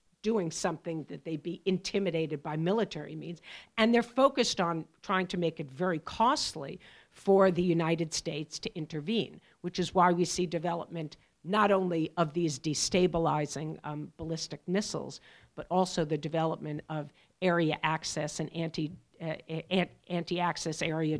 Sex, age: female, 50-69